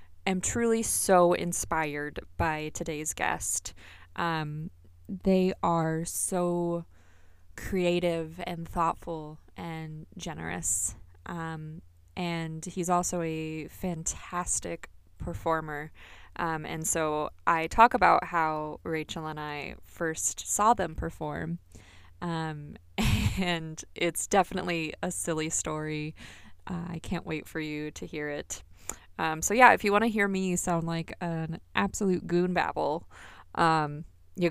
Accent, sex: American, female